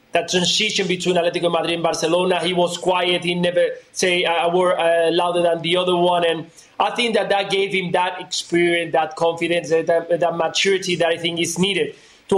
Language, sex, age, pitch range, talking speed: English, male, 20-39, 175-200 Hz, 205 wpm